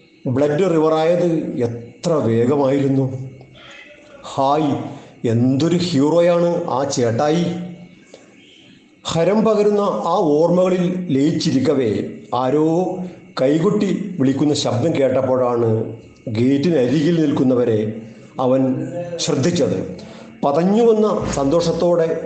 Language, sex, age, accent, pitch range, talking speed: Malayalam, male, 50-69, native, 135-175 Hz, 65 wpm